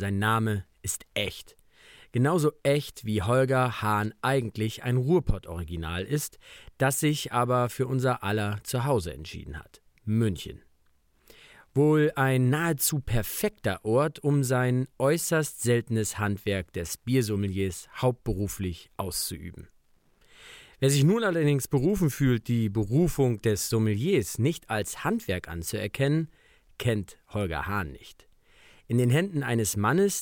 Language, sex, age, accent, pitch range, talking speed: German, male, 40-59, German, 100-135 Hz, 120 wpm